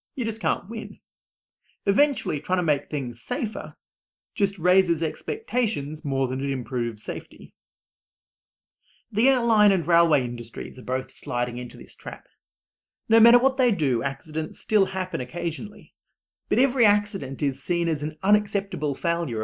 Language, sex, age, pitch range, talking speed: English, male, 30-49, 130-205 Hz, 145 wpm